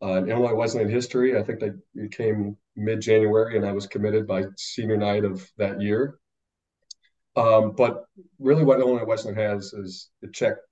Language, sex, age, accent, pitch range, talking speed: English, male, 30-49, American, 95-110 Hz, 170 wpm